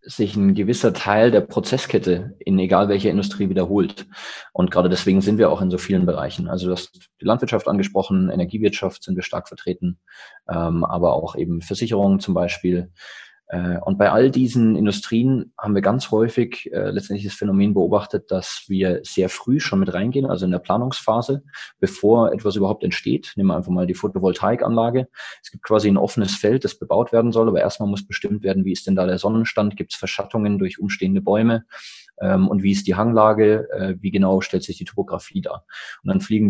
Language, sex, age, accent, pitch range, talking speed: German, male, 20-39, German, 95-115 Hz, 190 wpm